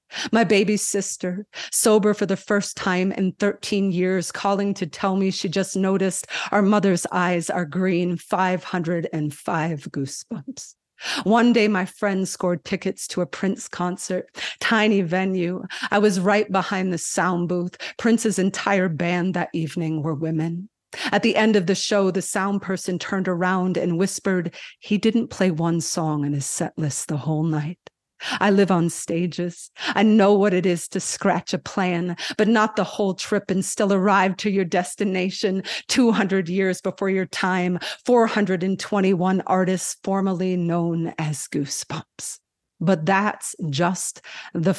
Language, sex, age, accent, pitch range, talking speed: English, female, 40-59, American, 175-200 Hz, 155 wpm